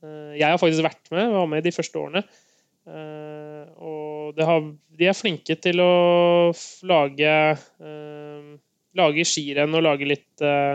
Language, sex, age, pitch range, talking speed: Swedish, male, 20-39, 150-180 Hz, 150 wpm